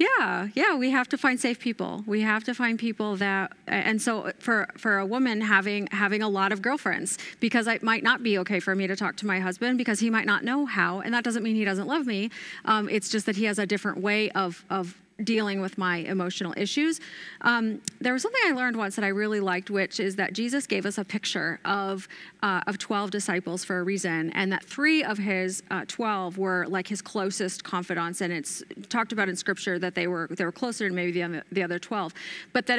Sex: female